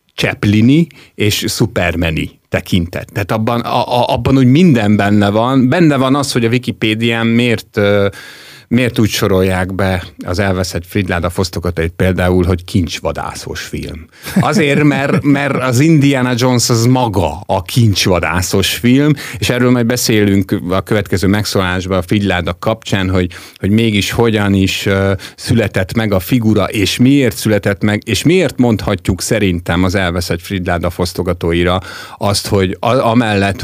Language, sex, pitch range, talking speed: Hungarian, male, 95-120 Hz, 140 wpm